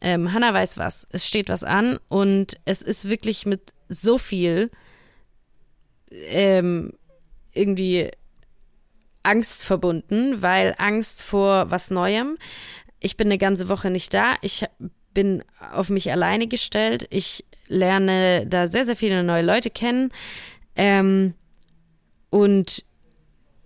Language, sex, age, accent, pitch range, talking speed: German, female, 20-39, German, 180-225 Hz, 120 wpm